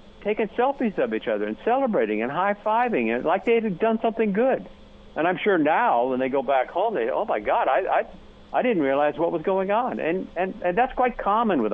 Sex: male